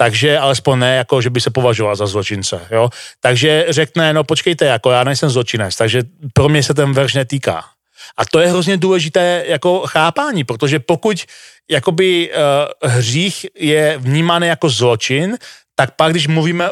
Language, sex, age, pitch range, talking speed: Slovak, male, 40-59, 130-165 Hz, 165 wpm